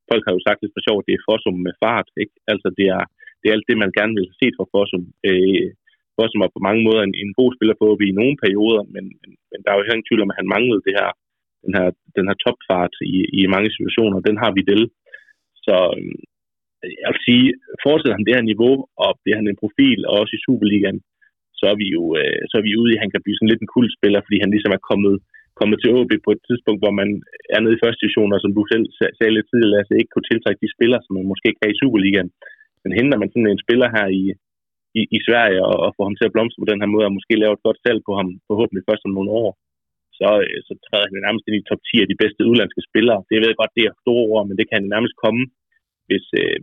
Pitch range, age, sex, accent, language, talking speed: 100-115 Hz, 30-49, male, native, Danish, 270 wpm